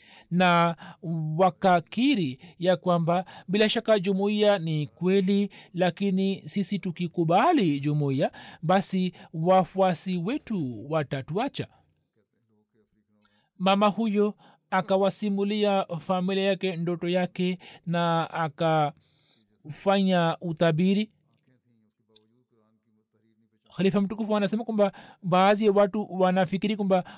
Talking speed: 80 wpm